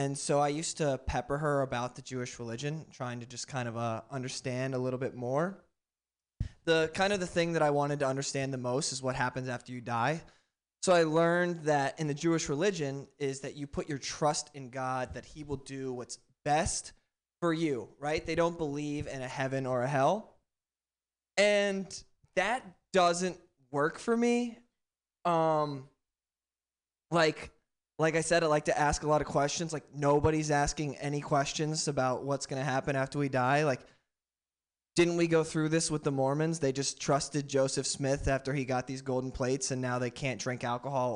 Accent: American